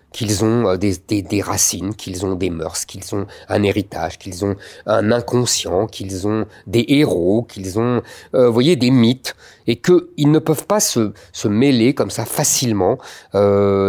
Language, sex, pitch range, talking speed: French, male, 100-135 Hz, 175 wpm